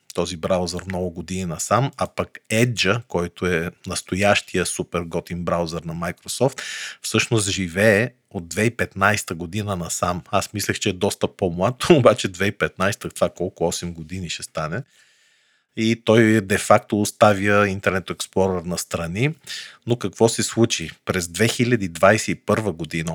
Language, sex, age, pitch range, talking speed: Bulgarian, male, 40-59, 90-110 Hz, 130 wpm